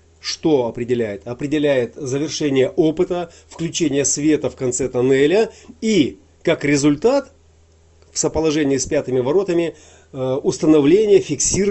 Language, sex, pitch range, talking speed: Russian, male, 120-150 Hz, 95 wpm